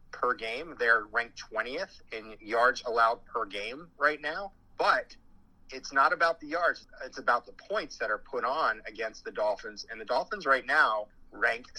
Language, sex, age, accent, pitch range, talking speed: English, male, 30-49, American, 115-140 Hz, 180 wpm